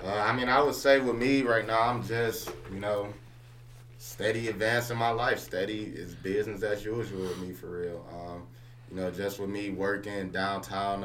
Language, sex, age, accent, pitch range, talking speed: English, male, 20-39, American, 90-100 Hz, 190 wpm